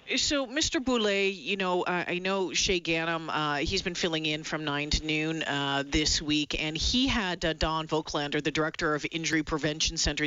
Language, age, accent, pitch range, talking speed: English, 40-59, American, 160-190 Hz, 200 wpm